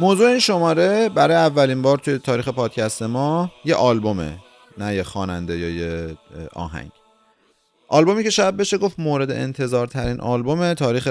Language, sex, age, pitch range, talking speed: Persian, male, 30-49, 110-165 Hz, 150 wpm